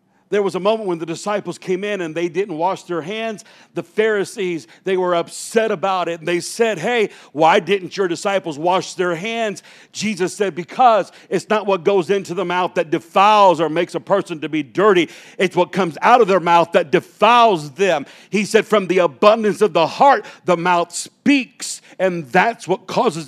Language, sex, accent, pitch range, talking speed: English, male, American, 175-220 Hz, 195 wpm